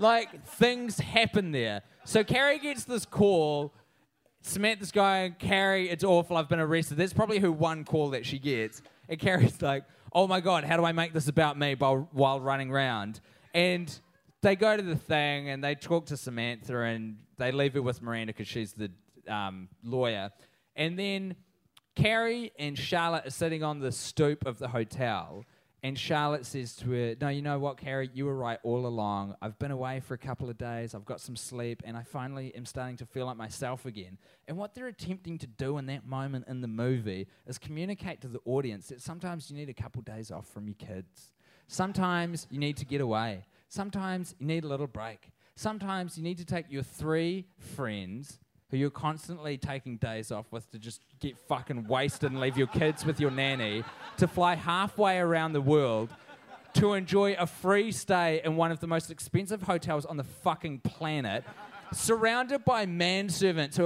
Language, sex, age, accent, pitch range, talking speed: English, male, 20-39, Australian, 125-175 Hz, 195 wpm